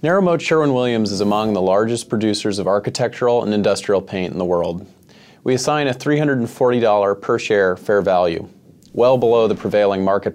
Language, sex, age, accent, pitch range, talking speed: English, male, 30-49, American, 100-135 Hz, 160 wpm